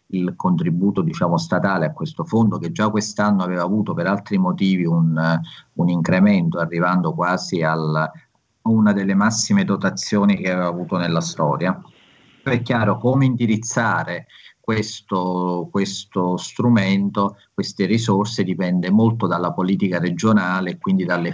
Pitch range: 85-110 Hz